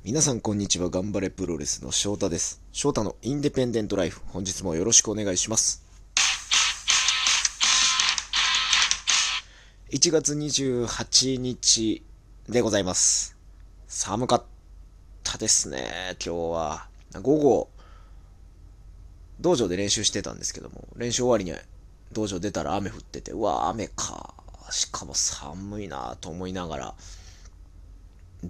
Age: 20-39